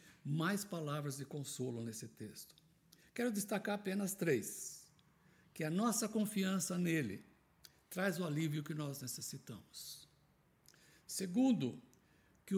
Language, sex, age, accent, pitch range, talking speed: Portuguese, male, 60-79, Brazilian, 140-195 Hz, 110 wpm